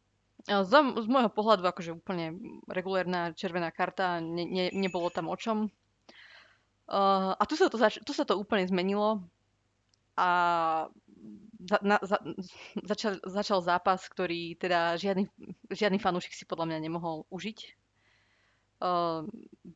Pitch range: 170-200 Hz